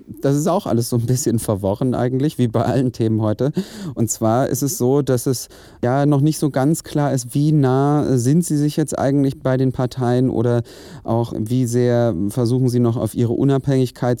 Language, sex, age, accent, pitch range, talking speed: German, male, 30-49, German, 110-130 Hz, 205 wpm